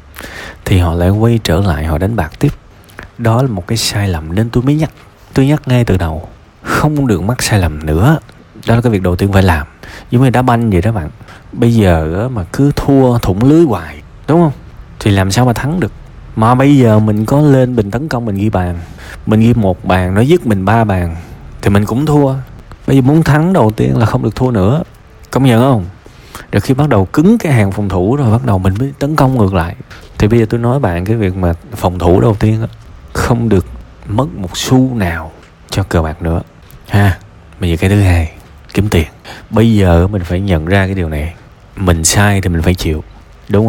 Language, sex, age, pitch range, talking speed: Vietnamese, male, 20-39, 90-120 Hz, 230 wpm